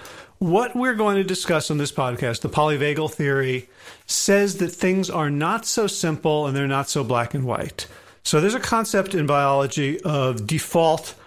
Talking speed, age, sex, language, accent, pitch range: 175 wpm, 40-59, male, English, American, 140-180 Hz